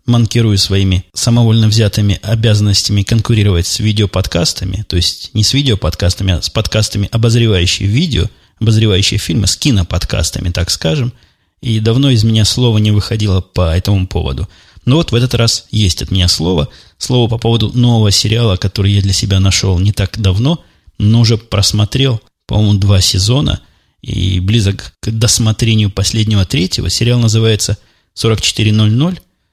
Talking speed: 145 wpm